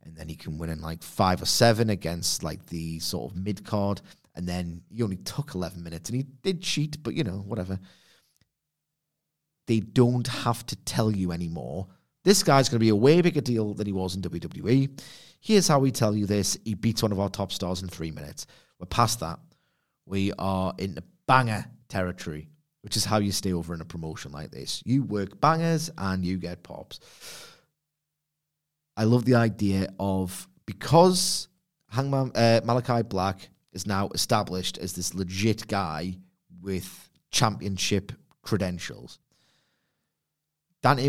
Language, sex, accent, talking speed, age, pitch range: English, male, British, 170 wpm, 30-49, 95-130 Hz